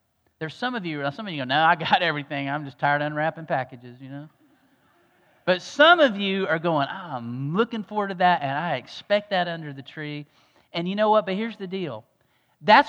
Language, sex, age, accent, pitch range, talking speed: English, male, 40-59, American, 150-215 Hz, 220 wpm